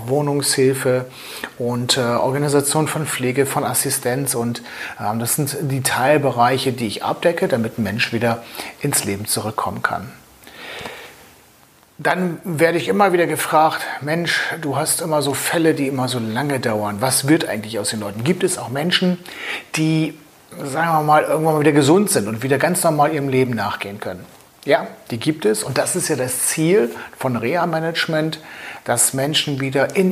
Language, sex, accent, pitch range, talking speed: German, male, German, 125-160 Hz, 170 wpm